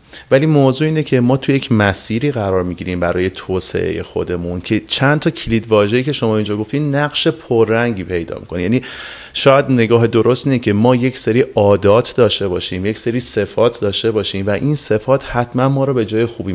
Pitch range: 105-130 Hz